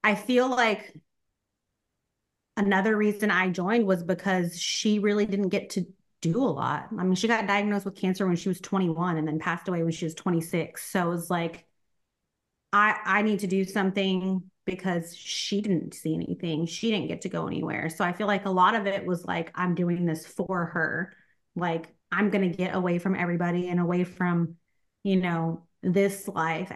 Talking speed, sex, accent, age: 195 wpm, female, American, 30-49